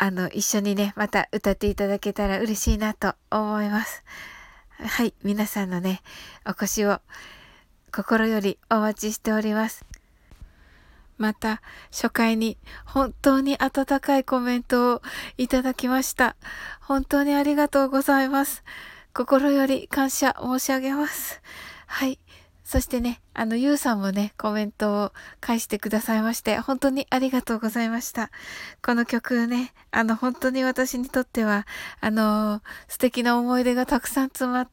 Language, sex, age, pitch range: Japanese, female, 20-39, 210-255 Hz